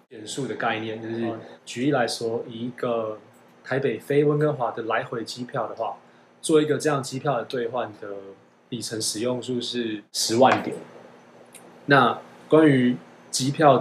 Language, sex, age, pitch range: Chinese, male, 20-39, 115-140 Hz